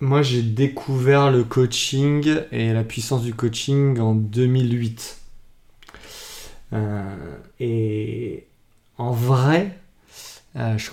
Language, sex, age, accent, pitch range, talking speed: French, male, 20-39, French, 115-135 Hz, 100 wpm